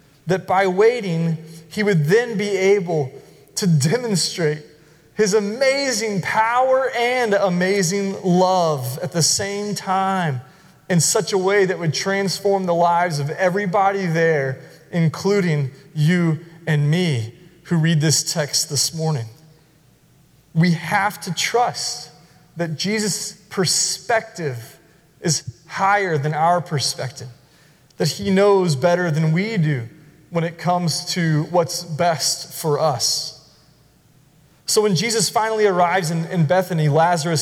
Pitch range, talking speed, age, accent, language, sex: 155-195 Hz, 125 wpm, 30-49, American, English, male